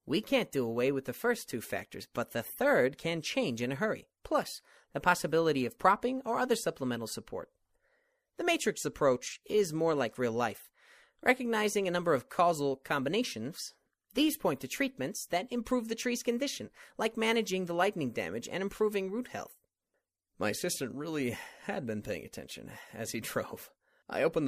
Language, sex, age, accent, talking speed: English, male, 30-49, American, 170 wpm